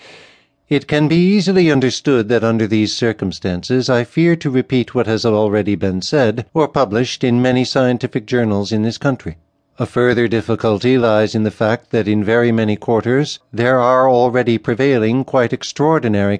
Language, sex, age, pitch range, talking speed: English, male, 60-79, 110-130 Hz, 165 wpm